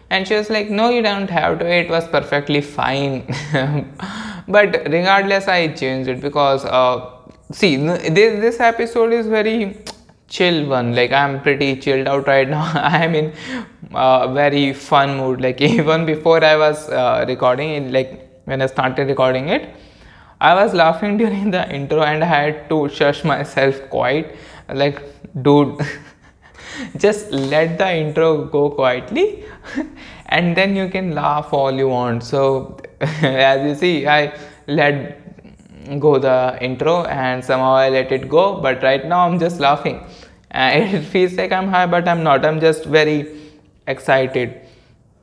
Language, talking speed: English, 155 wpm